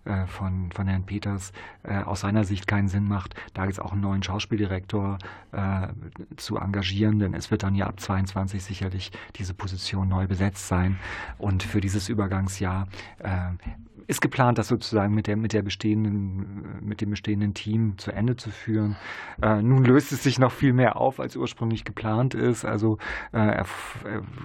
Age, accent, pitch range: 40-59, German, 100-110 Hz